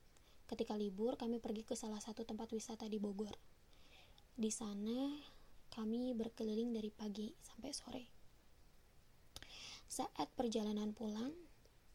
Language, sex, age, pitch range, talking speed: Indonesian, female, 20-39, 210-240 Hz, 110 wpm